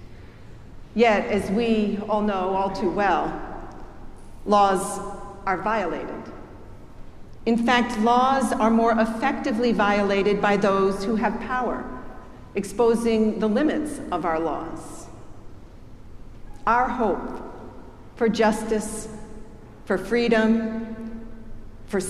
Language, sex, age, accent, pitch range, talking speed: English, female, 50-69, American, 200-235 Hz, 100 wpm